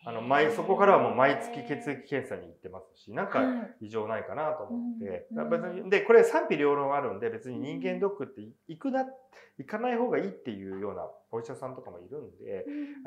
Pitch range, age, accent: 190-305 Hz, 30-49, native